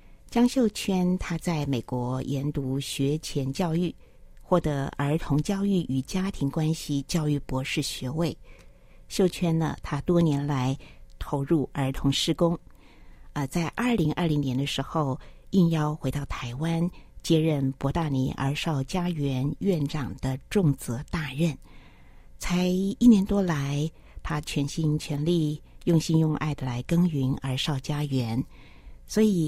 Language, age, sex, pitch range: Chinese, 50-69, female, 135-175 Hz